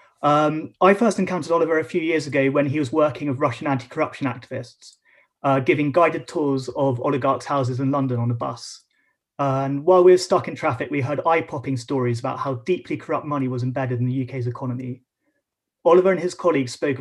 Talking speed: 200 wpm